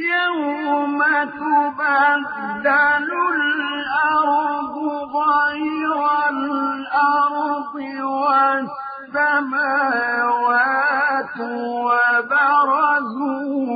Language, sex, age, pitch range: Arabic, male, 50-69, 240-290 Hz